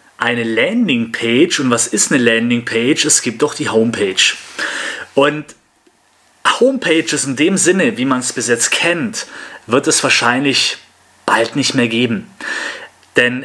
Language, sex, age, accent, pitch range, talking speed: German, male, 30-49, German, 125-195 Hz, 140 wpm